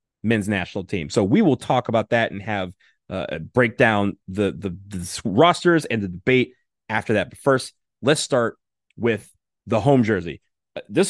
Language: English